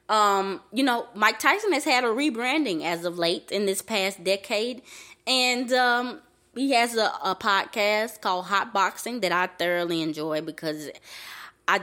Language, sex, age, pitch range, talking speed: English, female, 20-39, 175-240 Hz, 160 wpm